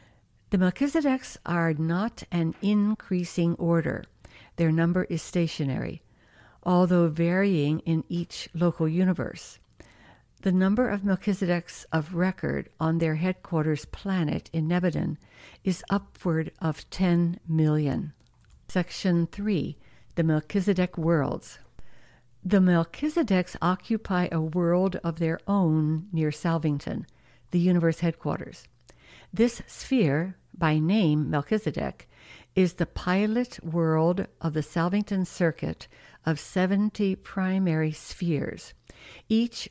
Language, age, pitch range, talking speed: English, 60-79, 160-195 Hz, 105 wpm